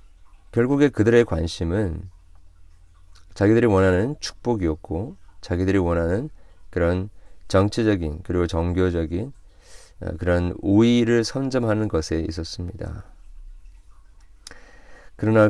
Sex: male